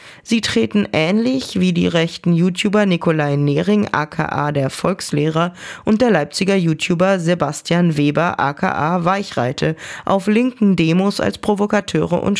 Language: German